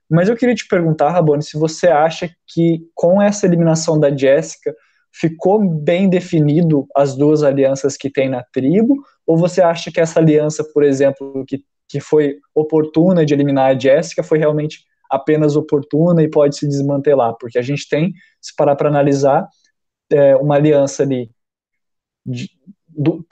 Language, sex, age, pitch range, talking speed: Portuguese, male, 20-39, 140-175 Hz, 165 wpm